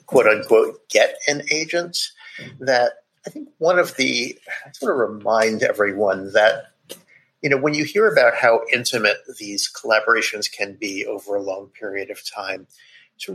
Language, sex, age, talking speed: English, male, 50-69, 160 wpm